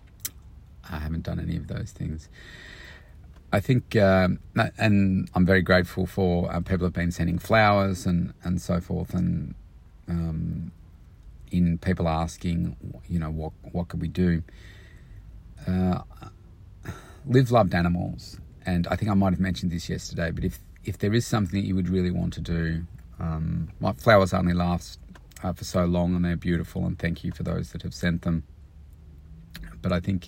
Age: 40-59